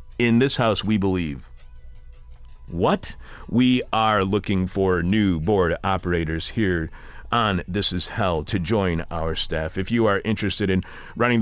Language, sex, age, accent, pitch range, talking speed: English, male, 40-59, American, 85-115 Hz, 145 wpm